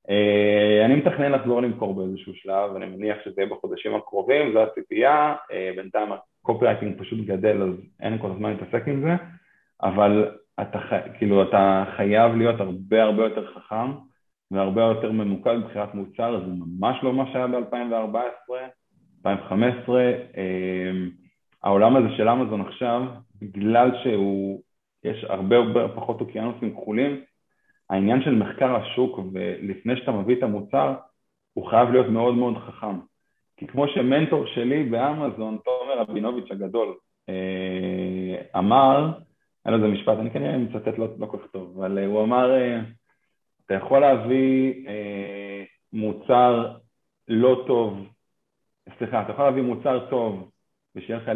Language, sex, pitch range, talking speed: Hebrew, male, 100-125 Hz, 135 wpm